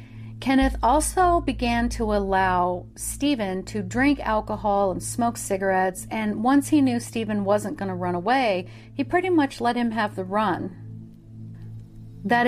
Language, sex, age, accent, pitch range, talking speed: English, female, 40-59, American, 170-230 Hz, 150 wpm